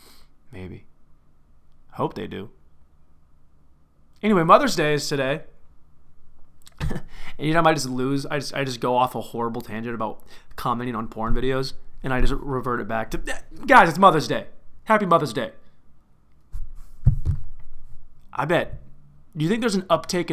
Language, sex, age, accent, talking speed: English, male, 20-39, American, 155 wpm